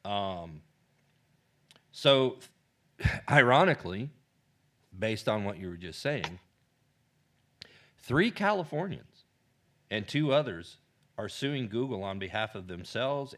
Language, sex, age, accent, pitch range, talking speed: English, male, 40-59, American, 90-130 Hz, 100 wpm